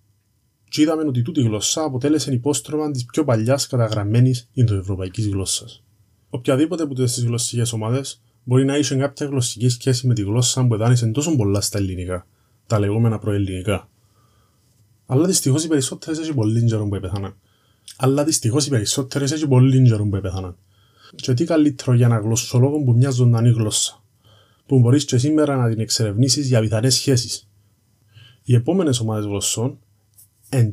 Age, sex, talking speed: 20-39, male, 75 wpm